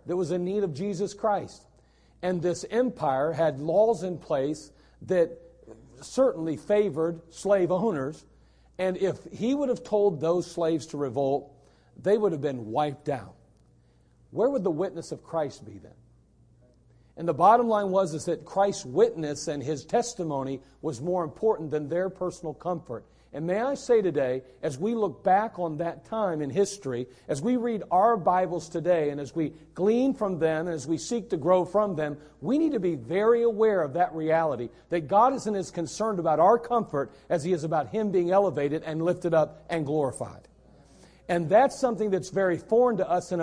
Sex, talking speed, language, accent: male, 185 wpm, English, American